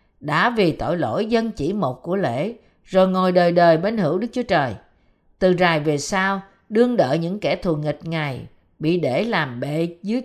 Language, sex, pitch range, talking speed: Vietnamese, female, 155-225 Hz, 200 wpm